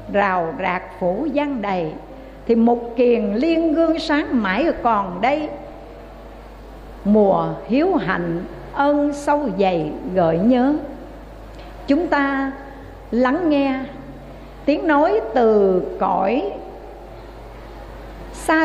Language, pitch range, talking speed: Vietnamese, 215-300 Hz, 100 wpm